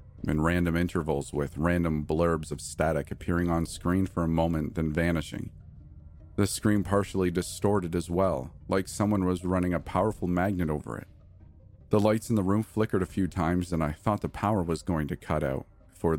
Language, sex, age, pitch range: English, male, 40-59, 80-100 Hz